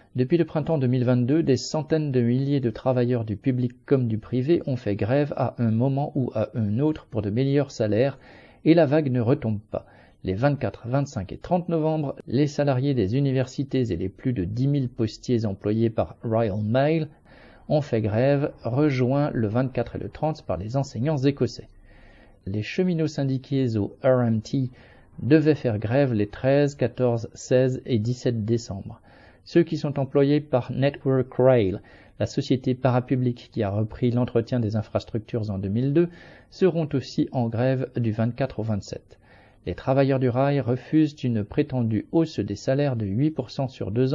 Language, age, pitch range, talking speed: French, 50-69, 110-140 Hz, 170 wpm